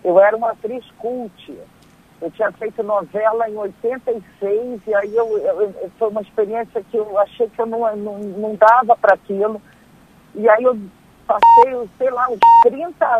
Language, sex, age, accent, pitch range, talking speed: Portuguese, male, 50-69, Brazilian, 205-260 Hz, 175 wpm